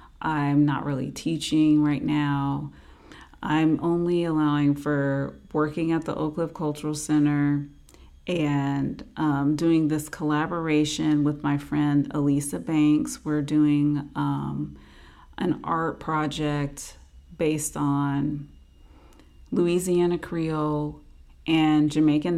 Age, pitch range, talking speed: 30-49, 140-155 Hz, 105 wpm